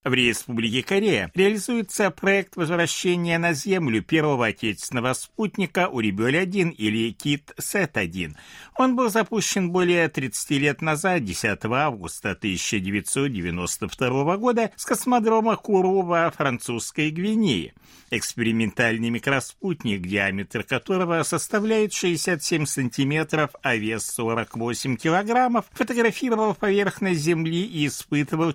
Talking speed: 100 wpm